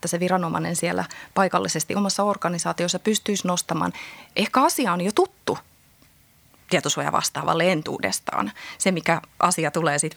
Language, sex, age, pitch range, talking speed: Finnish, female, 20-39, 165-185 Hz, 130 wpm